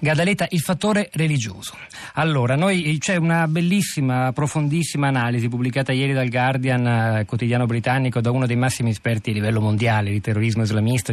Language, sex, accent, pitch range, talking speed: Italian, male, native, 125-155 Hz, 150 wpm